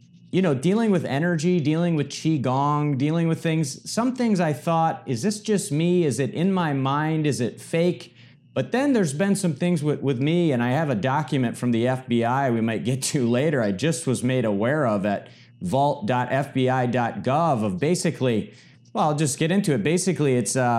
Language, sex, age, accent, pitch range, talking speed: English, male, 30-49, American, 120-155 Hz, 205 wpm